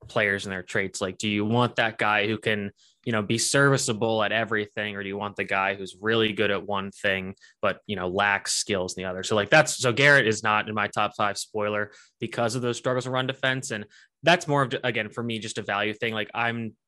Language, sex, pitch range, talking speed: English, male, 100-120 Hz, 250 wpm